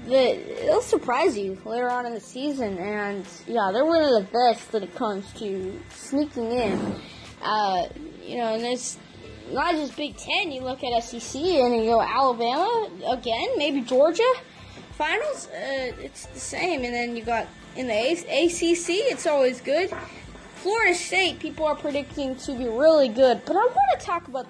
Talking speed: 180 wpm